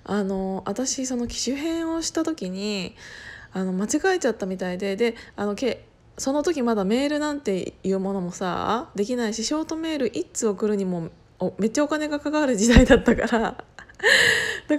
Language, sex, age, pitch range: Japanese, female, 20-39, 205-300 Hz